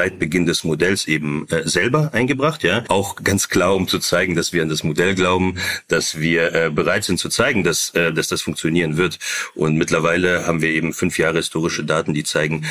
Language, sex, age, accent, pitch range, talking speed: German, male, 40-59, German, 75-90 Hz, 210 wpm